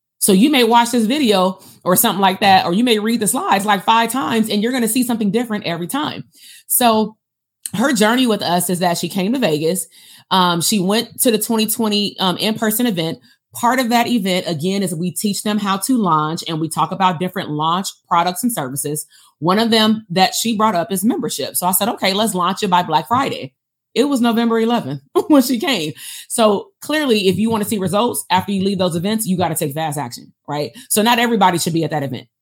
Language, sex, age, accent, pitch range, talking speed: English, female, 30-49, American, 175-225 Hz, 230 wpm